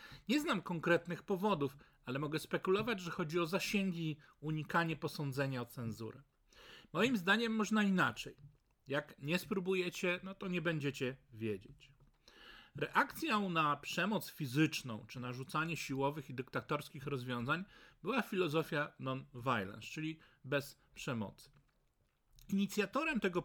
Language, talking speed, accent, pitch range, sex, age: Polish, 120 wpm, native, 140-185 Hz, male, 40-59